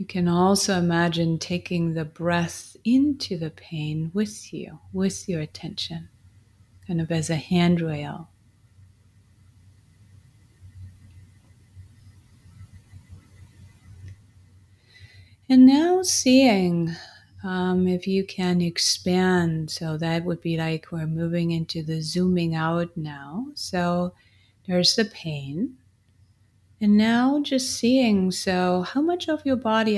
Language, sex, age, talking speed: English, female, 30-49, 110 wpm